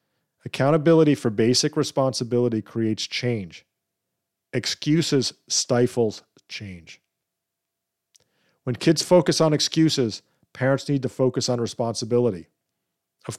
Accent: American